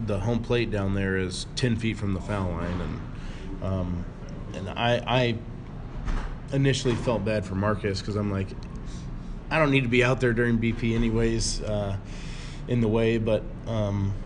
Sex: male